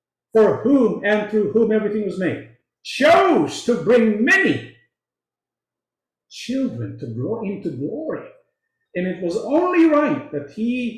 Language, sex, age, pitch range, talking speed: English, male, 50-69, 145-220 Hz, 130 wpm